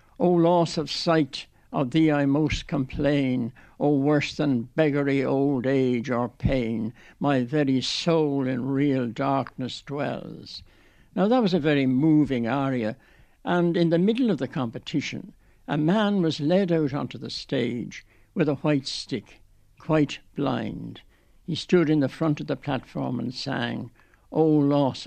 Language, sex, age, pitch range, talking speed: English, male, 60-79, 125-170 Hz, 155 wpm